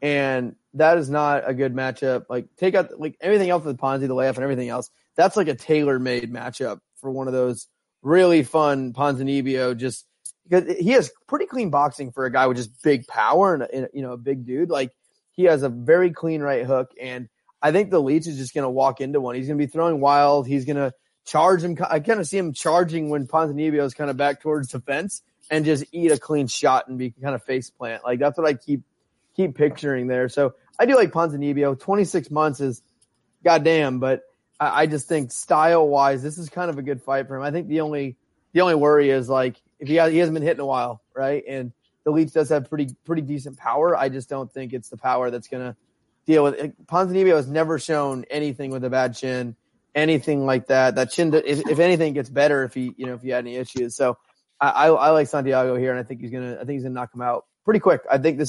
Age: 20-39